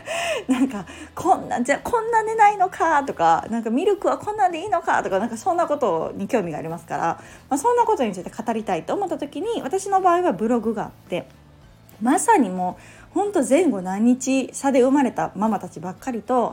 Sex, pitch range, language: female, 180-275 Hz, Japanese